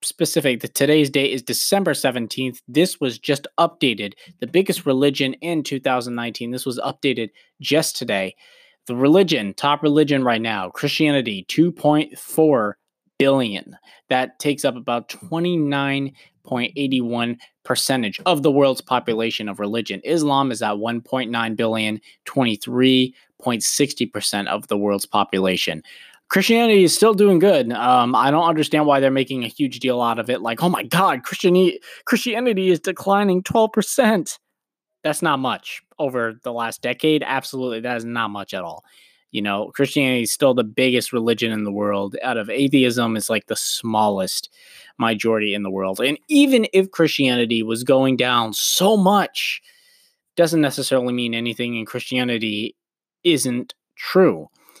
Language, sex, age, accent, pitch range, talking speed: English, male, 20-39, American, 115-160 Hz, 145 wpm